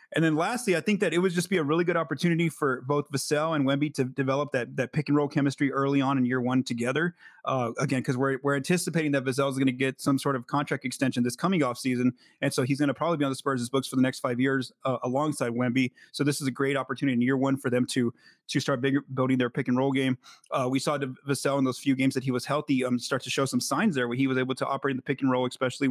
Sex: male